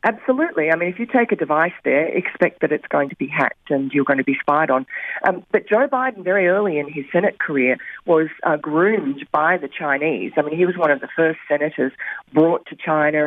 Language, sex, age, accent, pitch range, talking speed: English, female, 40-59, Australian, 145-180 Hz, 230 wpm